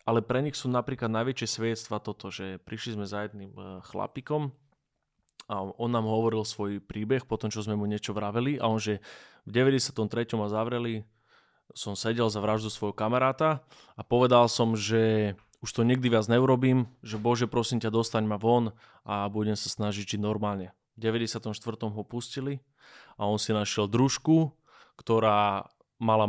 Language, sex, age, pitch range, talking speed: Slovak, male, 20-39, 105-120 Hz, 160 wpm